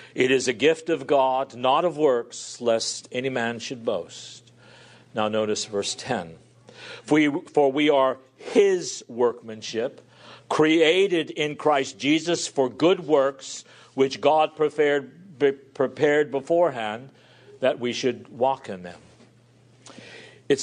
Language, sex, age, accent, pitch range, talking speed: English, male, 50-69, American, 135-205 Hz, 130 wpm